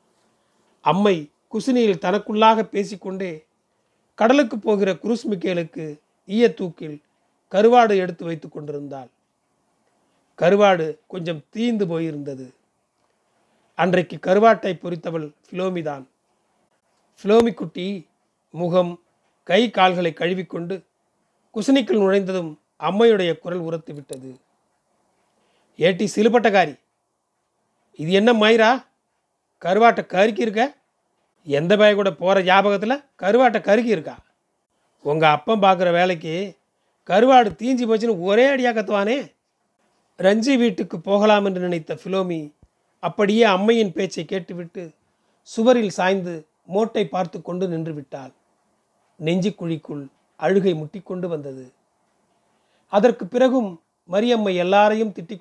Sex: male